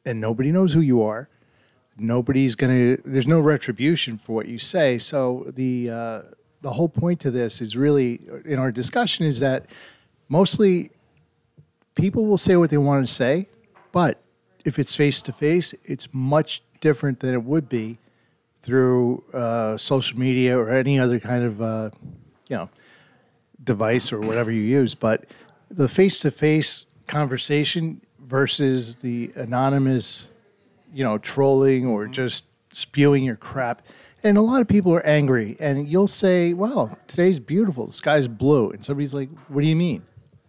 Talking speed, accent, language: 165 wpm, American, English